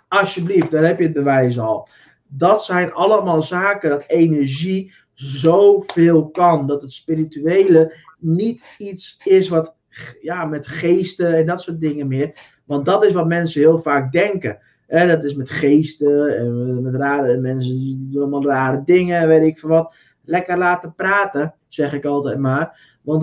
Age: 20-39